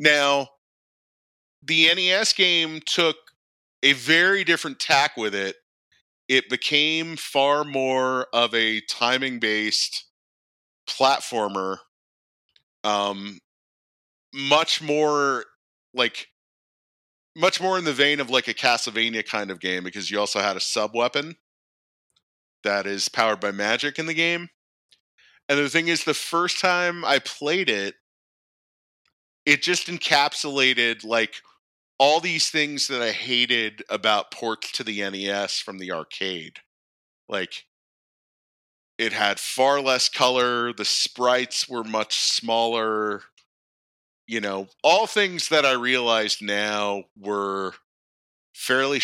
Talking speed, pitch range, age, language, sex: 120 wpm, 100-145 Hz, 30-49, English, male